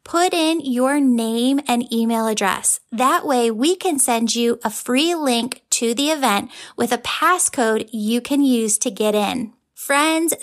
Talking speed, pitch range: 165 wpm, 225-275 Hz